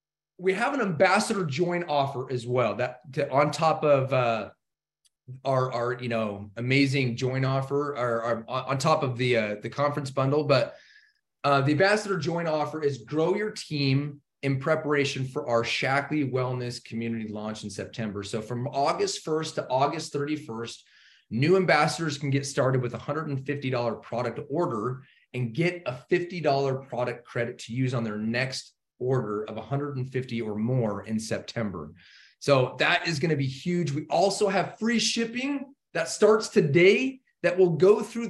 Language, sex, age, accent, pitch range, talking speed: English, male, 30-49, American, 130-180 Hz, 160 wpm